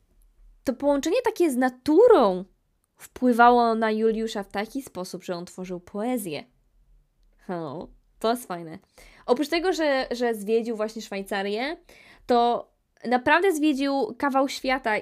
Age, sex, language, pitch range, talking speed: 20-39, female, Polish, 195-245 Hz, 120 wpm